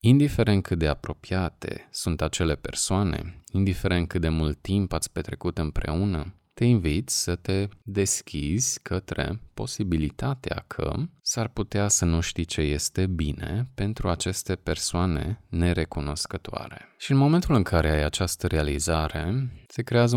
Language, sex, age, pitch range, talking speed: Romanian, male, 20-39, 80-110 Hz, 135 wpm